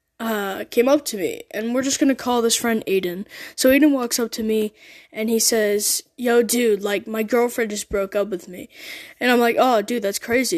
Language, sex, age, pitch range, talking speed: English, female, 10-29, 215-265 Hz, 220 wpm